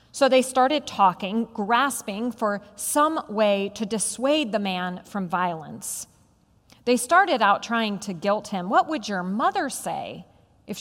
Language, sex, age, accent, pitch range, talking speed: English, female, 40-59, American, 180-240 Hz, 150 wpm